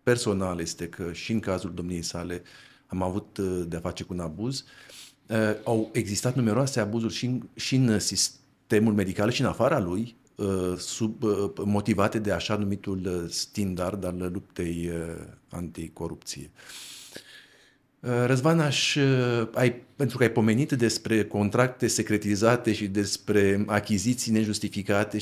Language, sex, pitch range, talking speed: Romanian, male, 95-125 Hz, 135 wpm